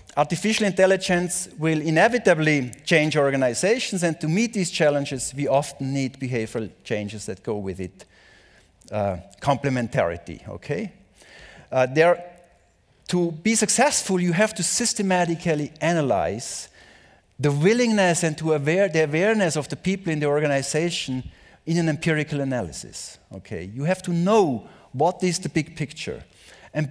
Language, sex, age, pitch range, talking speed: German, male, 50-69, 145-190 Hz, 135 wpm